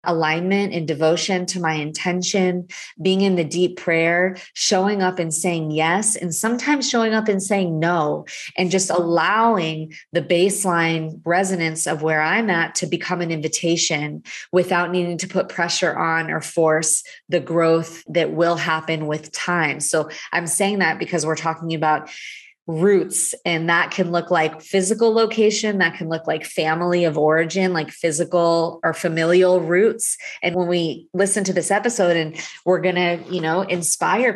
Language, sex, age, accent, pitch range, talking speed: English, female, 20-39, American, 165-185 Hz, 165 wpm